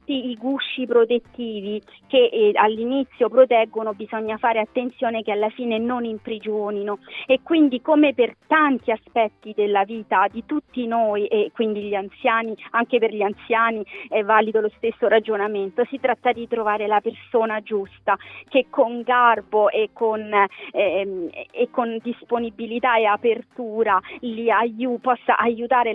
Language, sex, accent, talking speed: Italian, female, native, 145 wpm